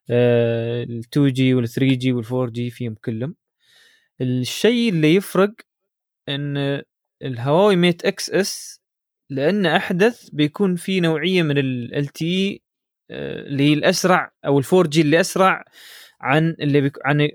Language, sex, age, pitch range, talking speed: Arabic, male, 20-39, 130-175 Hz, 110 wpm